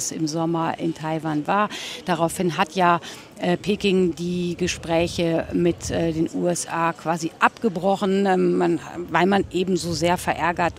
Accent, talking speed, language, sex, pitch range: German, 120 wpm, German, female, 170-200 Hz